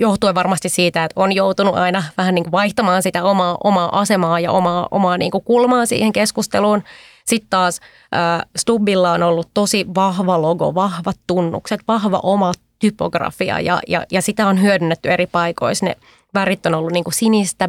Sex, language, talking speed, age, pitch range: female, Finnish, 165 wpm, 20-39, 175-205 Hz